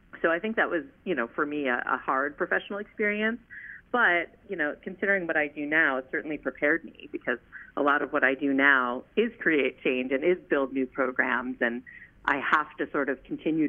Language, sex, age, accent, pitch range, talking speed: English, female, 40-59, American, 125-150 Hz, 215 wpm